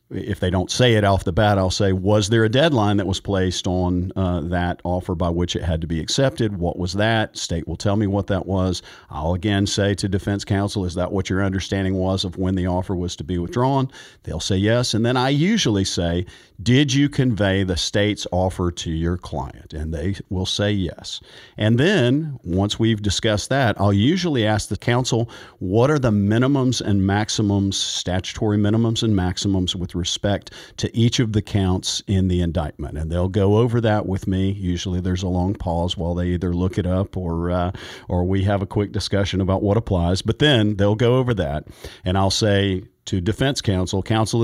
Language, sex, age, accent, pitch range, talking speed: English, male, 50-69, American, 90-110 Hz, 205 wpm